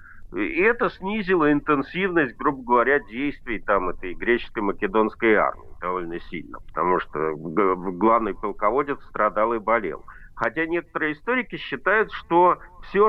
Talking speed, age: 125 wpm, 50-69